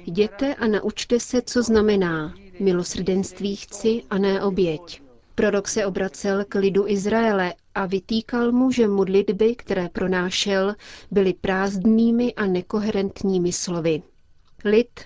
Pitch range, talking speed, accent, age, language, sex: 185-215 Hz, 120 wpm, native, 30-49, Czech, female